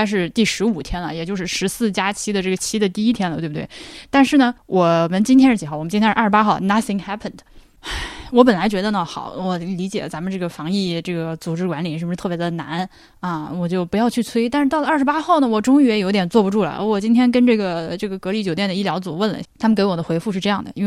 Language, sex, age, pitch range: Chinese, female, 10-29, 180-230 Hz